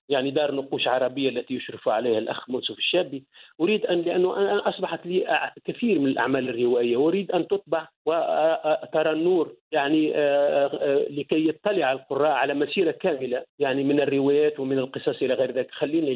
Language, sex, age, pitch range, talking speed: English, male, 50-69, 140-170 Hz, 140 wpm